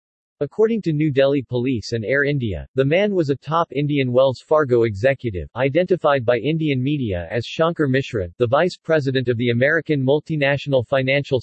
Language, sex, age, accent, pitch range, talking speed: English, male, 40-59, American, 120-150 Hz, 170 wpm